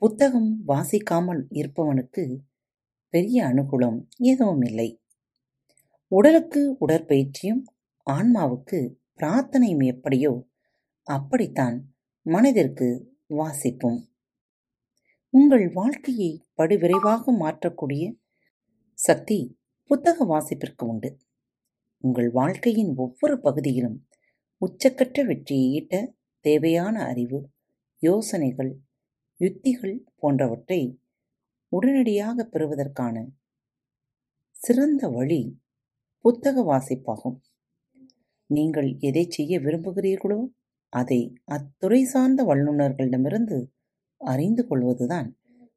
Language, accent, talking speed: Tamil, native, 60 wpm